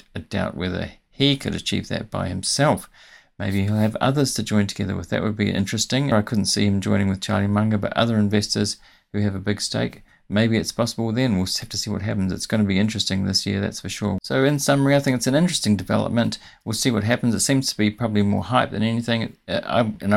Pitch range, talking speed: 100-115 Hz, 240 wpm